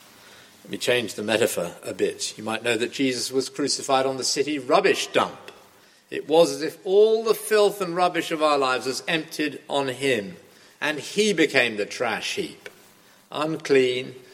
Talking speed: 175 wpm